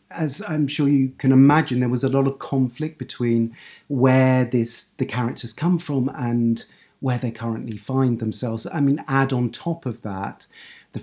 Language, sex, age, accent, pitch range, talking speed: English, male, 40-59, British, 110-135 Hz, 180 wpm